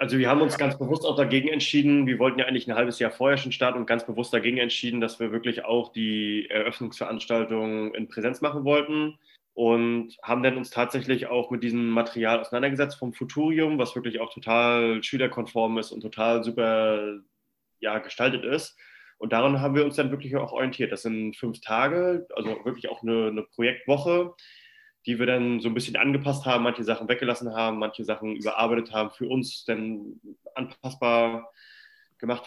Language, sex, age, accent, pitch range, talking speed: German, male, 20-39, German, 115-135 Hz, 180 wpm